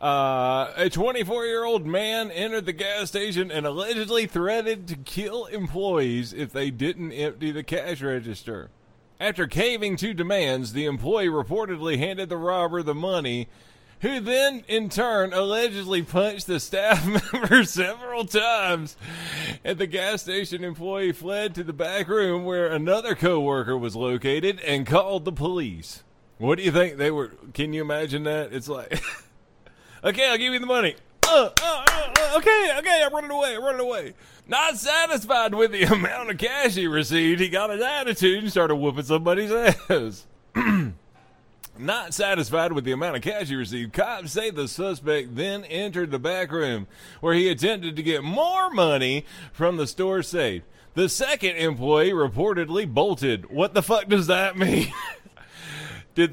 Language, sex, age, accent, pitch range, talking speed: English, male, 30-49, American, 150-210 Hz, 165 wpm